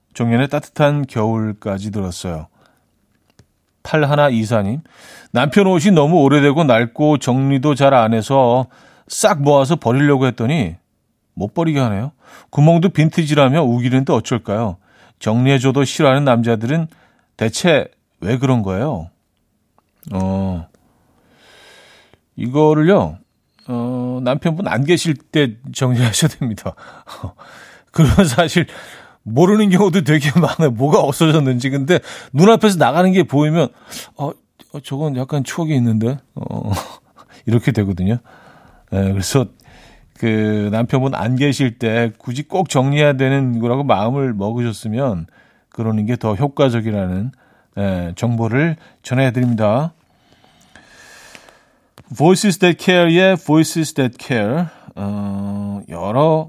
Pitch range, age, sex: 115-155 Hz, 40-59, male